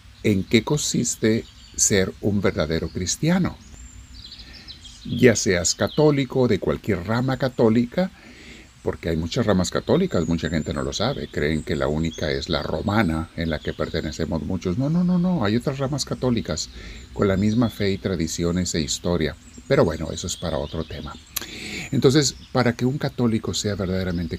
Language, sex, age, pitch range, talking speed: Spanish, male, 50-69, 80-115 Hz, 160 wpm